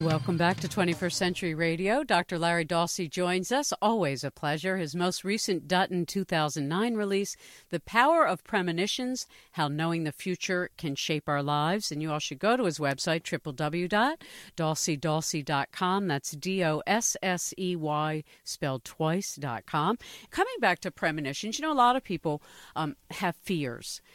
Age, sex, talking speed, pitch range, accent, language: 50-69, female, 155 wpm, 155-190 Hz, American, English